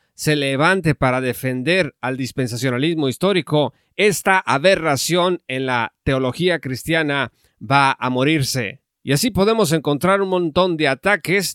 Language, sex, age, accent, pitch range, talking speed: Spanish, male, 40-59, Mexican, 135-175 Hz, 125 wpm